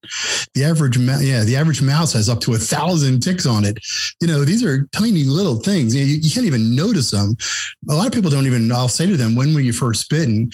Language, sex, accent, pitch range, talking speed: English, male, American, 115-150 Hz, 245 wpm